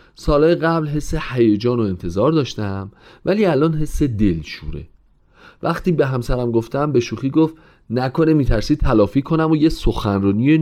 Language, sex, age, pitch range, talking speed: Persian, male, 40-59, 95-150 Hz, 140 wpm